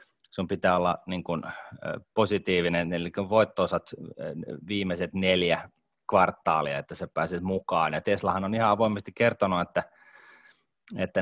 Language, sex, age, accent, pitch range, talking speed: Finnish, male, 30-49, native, 90-105 Hz, 130 wpm